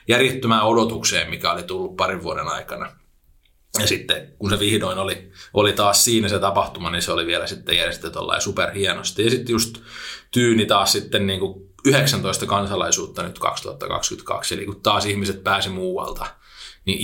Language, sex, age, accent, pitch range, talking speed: Finnish, male, 20-39, native, 95-115 Hz, 160 wpm